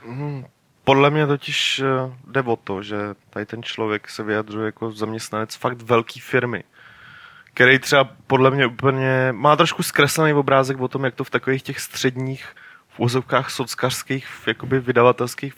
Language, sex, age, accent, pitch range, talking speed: Czech, male, 20-39, native, 110-130 Hz, 150 wpm